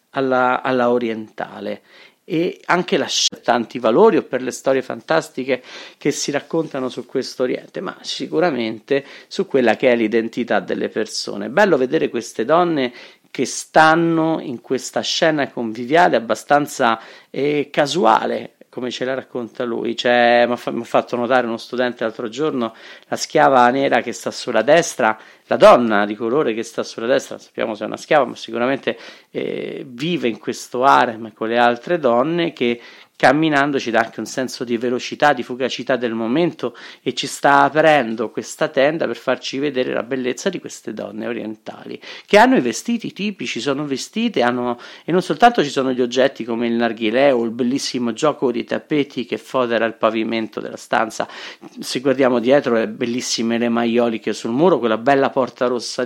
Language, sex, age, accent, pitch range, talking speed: Italian, male, 40-59, native, 115-140 Hz, 165 wpm